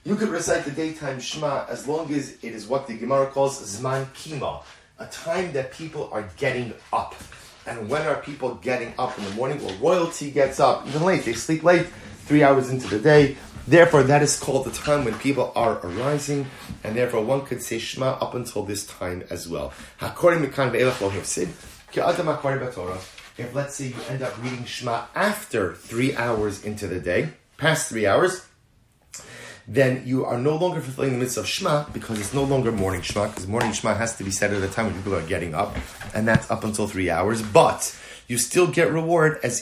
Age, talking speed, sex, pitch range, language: 30-49, 205 wpm, male, 105-140 Hz, English